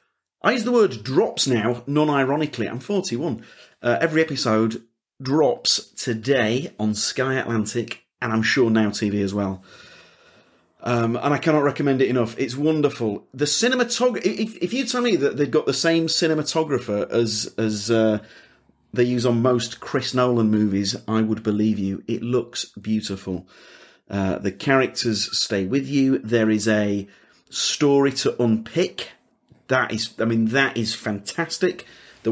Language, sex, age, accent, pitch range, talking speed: English, male, 40-59, British, 110-155 Hz, 155 wpm